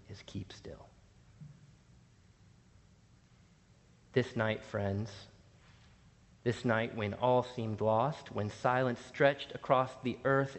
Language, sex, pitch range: English, male, 105-135 Hz